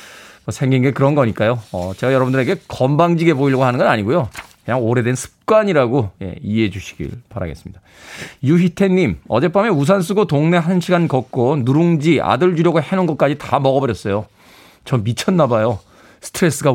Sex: male